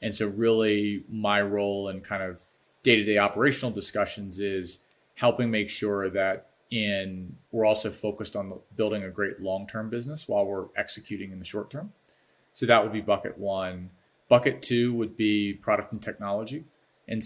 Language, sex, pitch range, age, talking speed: English, male, 95-110 Hz, 30-49, 160 wpm